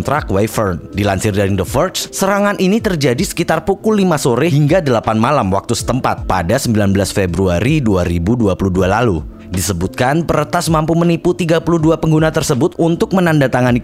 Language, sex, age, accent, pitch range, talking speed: Indonesian, male, 30-49, native, 105-165 Hz, 140 wpm